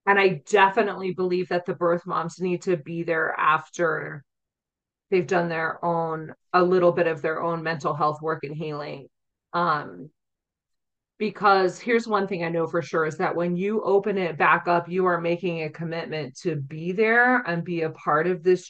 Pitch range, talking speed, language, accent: 170-200 Hz, 190 wpm, English, American